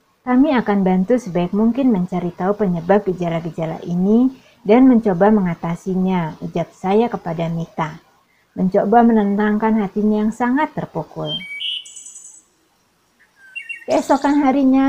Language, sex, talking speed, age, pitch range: Indonesian, female, 100 wpm, 30-49, 185-230 Hz